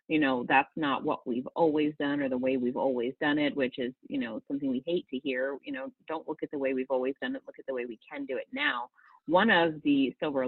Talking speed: 275 wpm